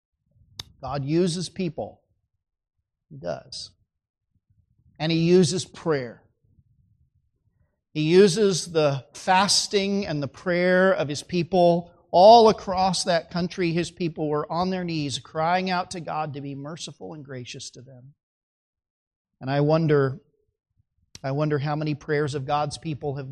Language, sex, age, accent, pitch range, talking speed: English, male, 40-59, American, 135-170 Hz, 135 wpm